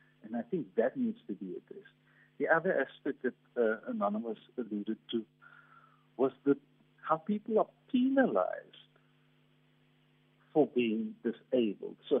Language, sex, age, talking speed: English, male, 50-69, 125 wpm